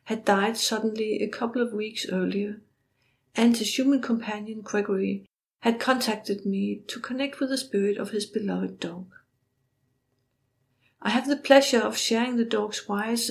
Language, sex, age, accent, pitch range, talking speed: English, female, 60-79, Danish, 185-225 Hz, 155 wpm